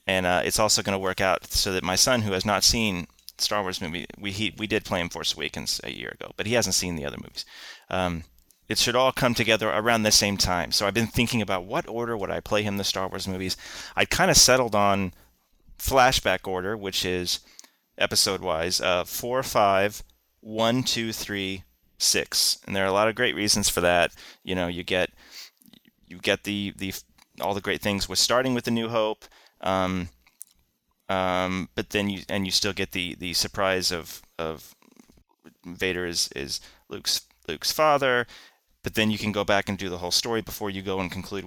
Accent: American